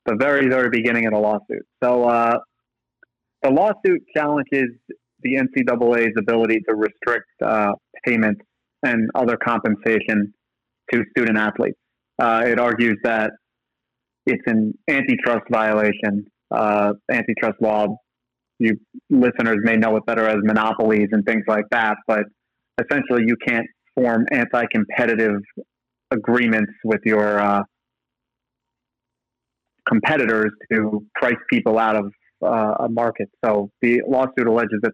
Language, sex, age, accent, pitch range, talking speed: English, male, 30-49, American, 110-125 Hz, 120 wpm